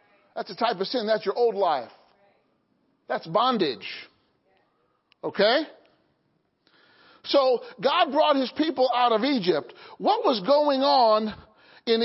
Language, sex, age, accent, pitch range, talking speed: English, male, 50-69, American, 225-295 Hz, 125 wpm